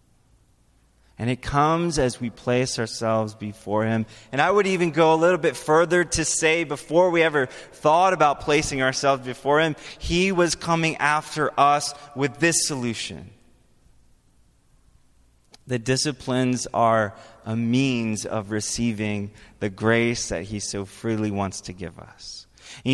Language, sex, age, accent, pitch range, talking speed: English, male, 20-39, American, 110-160 Hz, 145 wpm